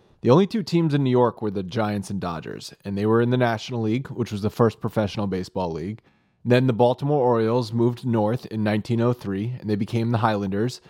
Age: 30-49